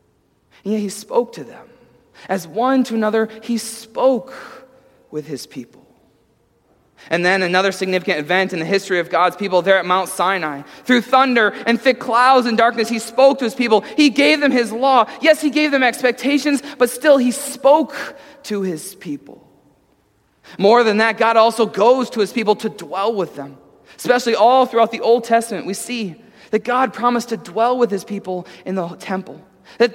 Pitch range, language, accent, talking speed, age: 195-255 Hz, English, American, 185 wpm, 20-39